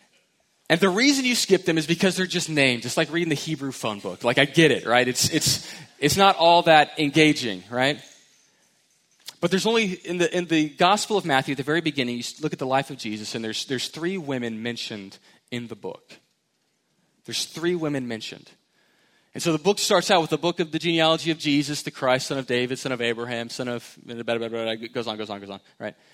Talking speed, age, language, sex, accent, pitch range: 225 wpm, 30-49, English, male, American, 115-160 Hz